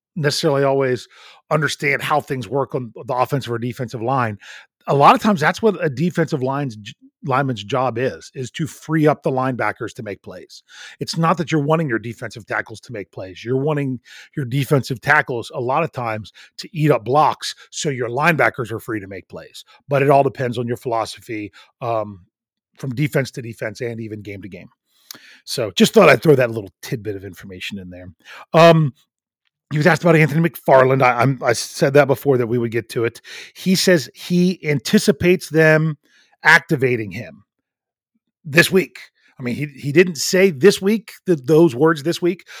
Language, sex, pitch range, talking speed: English, male, 120-160 Hz, 190 wpm